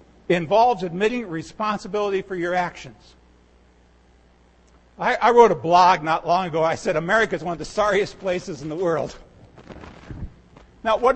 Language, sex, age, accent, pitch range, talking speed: English, male, 50-69, American, 150-210 Hz, 150 wpm